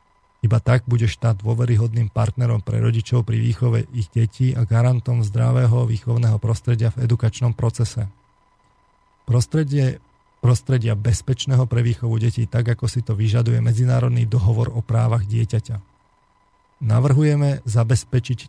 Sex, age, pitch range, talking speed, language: male, 40-59, 115-125 Hz, 125 wpm, Slovak